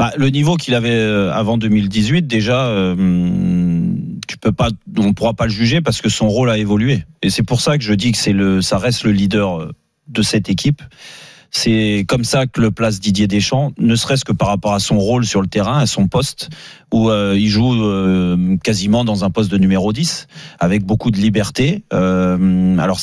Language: French